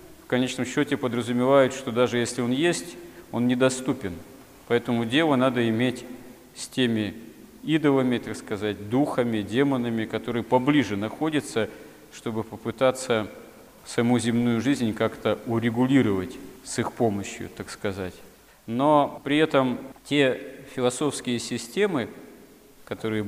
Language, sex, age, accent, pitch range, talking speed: Russian, male, 40-59, native, 110-130 Hz, 115 wpm